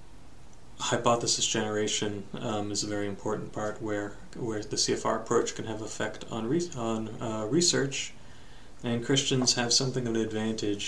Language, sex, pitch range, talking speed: English, male, 100-115 Hz, 160 wpm